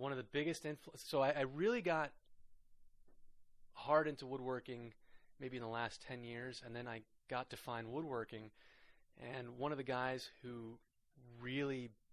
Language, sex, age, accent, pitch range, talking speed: English, male, 20-39, American, 115-140 Hz, 160 wpm